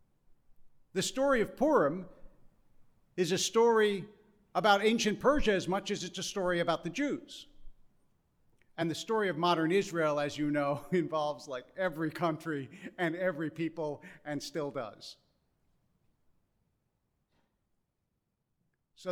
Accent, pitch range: American, 145-185 Hz